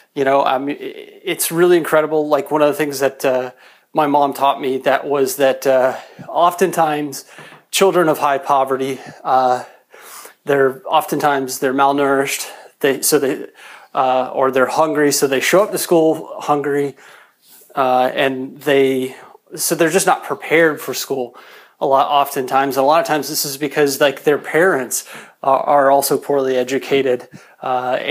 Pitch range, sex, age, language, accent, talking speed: 135-155 Hz, male, 30-49, English, American, 160 wpm